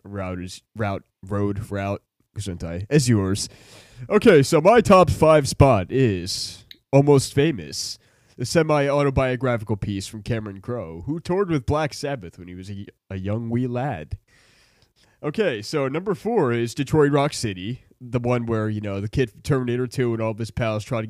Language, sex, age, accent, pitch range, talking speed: English, male, 20-39, American, 100-140 Hz, 175 wpm